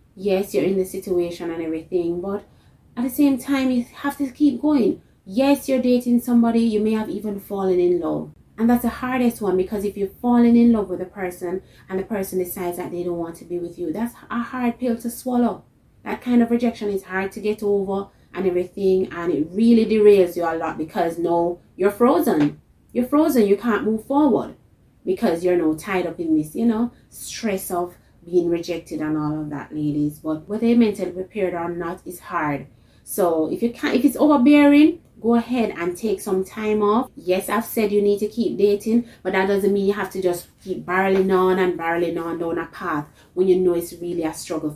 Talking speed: 215 wpm